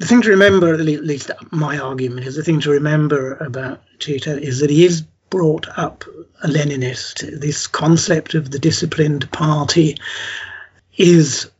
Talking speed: 155 wpm